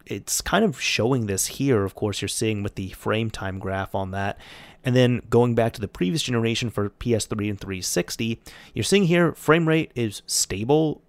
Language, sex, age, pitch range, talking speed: English, male, 30-49, 105-130 Hz, 195 wpm